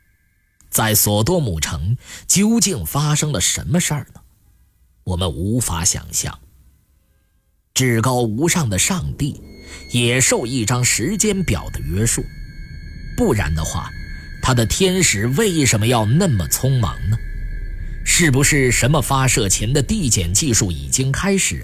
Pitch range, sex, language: 90-135 Hz, male, Chinese